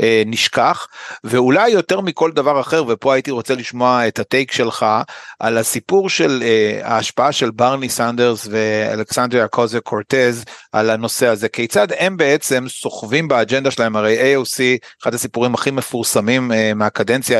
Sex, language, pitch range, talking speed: male, Hebrew, 115-135 Hz, 145 wpm